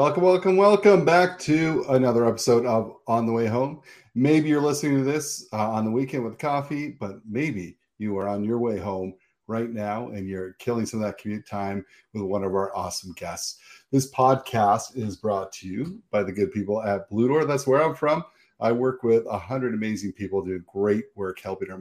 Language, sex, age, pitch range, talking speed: English, male, 40-59, 100-130 Hz, 210 wpm